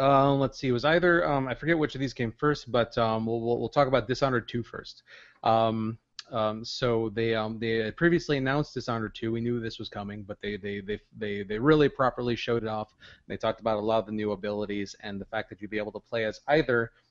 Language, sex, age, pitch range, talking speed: English, male, 30-49, 105-125 Hz, 245 wpm